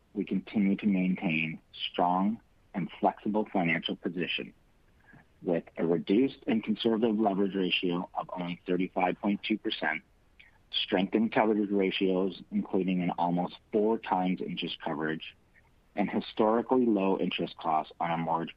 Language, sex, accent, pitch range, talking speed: English, male, American, 85-105 Hz, 120 wpm